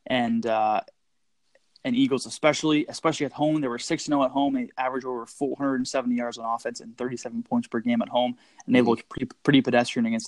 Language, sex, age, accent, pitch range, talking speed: English, male, 20-39, American, 125-175 Hz, 235 wpm